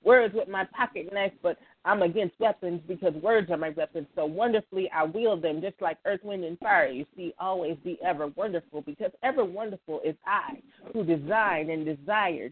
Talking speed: 190 wpm